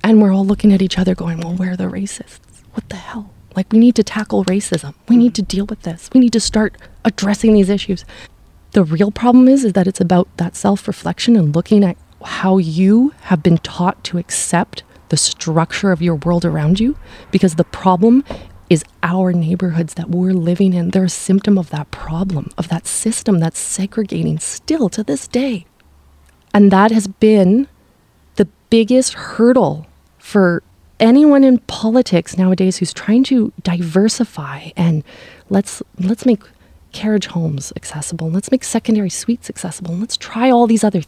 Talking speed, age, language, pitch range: 175 wpm, 20-39, English, 175-225 Hz